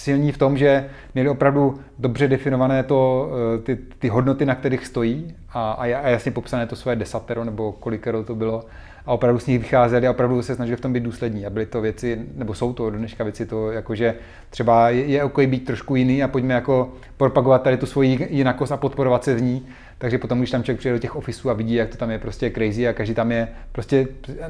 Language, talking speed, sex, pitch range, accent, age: Czech, 225 wpm, male, 115-130 Hz, native, 30-49